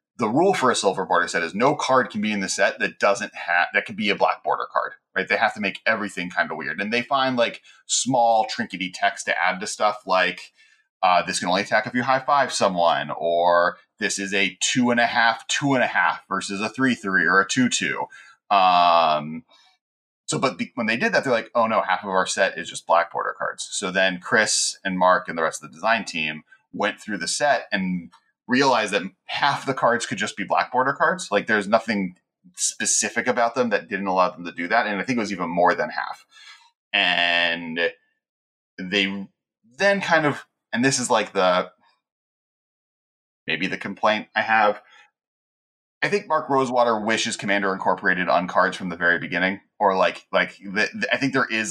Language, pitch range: English, 90-120 Hz